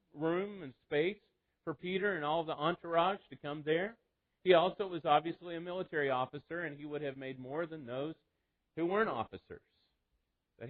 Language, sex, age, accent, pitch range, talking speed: English, male, 40-59, American, 140-185 Hz, 175 wpm